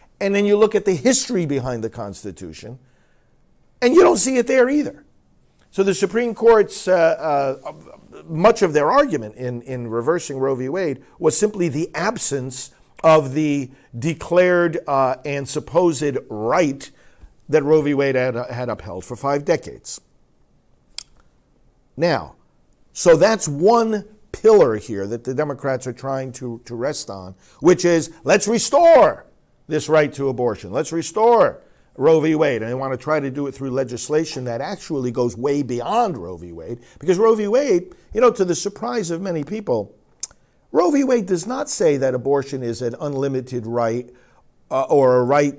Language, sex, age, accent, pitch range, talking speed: English, male, 50-69, American, 125-185 Hz, 170 wpm